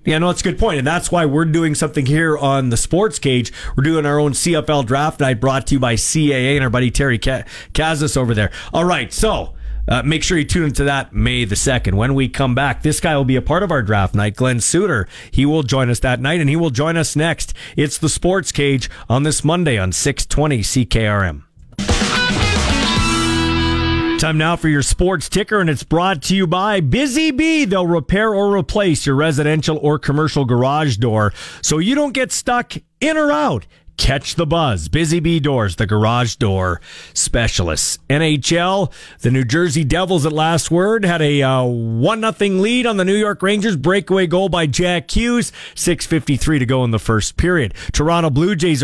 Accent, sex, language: American, male, English